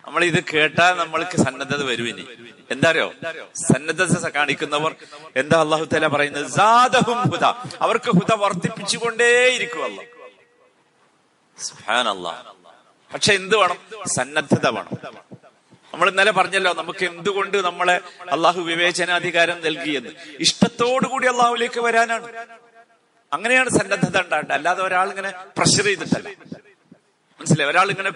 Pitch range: 170-230 Hz